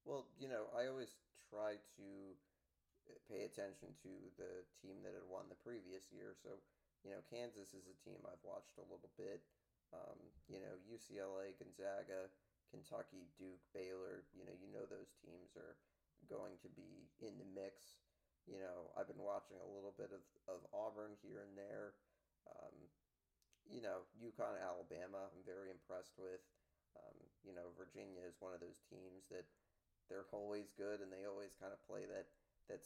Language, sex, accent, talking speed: English, male, American, 175 wpm